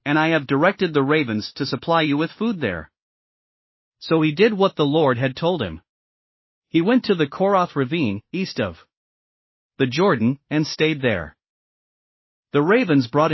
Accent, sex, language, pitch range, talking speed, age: American, male, English, 135-175 Hz, 165 wpm, 40-59